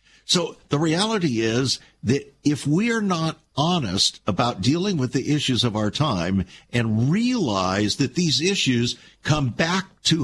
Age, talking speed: 60-79, 145 wpm